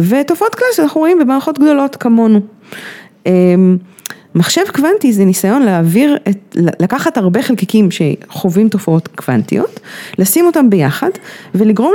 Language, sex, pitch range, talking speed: Hebrew, female, 175-235 Hz, 115 wpm